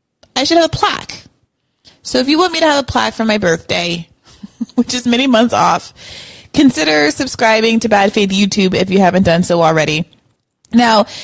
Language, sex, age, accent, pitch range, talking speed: English, female, 30-49, American, 175-225 Hz, 185 wpm